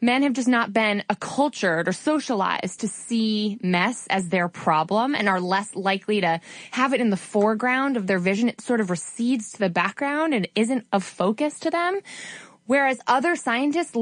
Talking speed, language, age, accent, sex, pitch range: 185 wpm, English, 20-39, American, female, 195-260 Hz